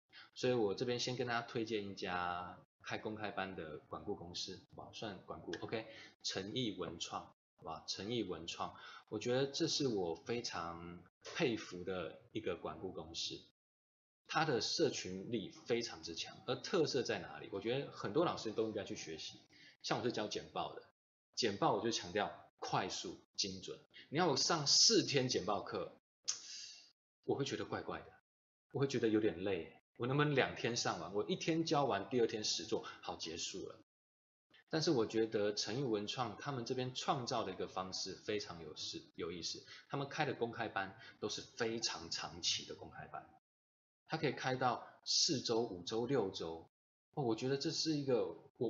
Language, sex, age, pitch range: Chinese, male, 20-39, 90-130 Hz